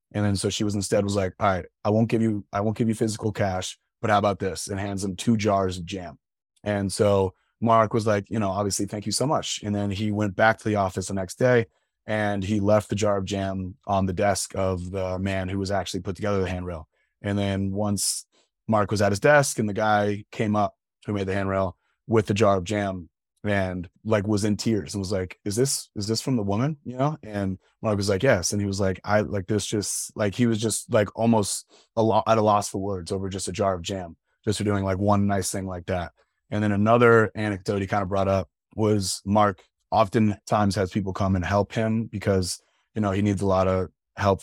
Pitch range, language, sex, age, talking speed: 95-110 Hz, English, male, 30-49, 245 wpm